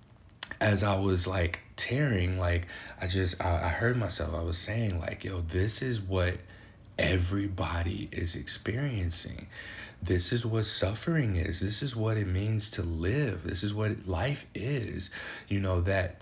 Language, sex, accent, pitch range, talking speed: English, male, American, 90-110 Hz, 160 wpm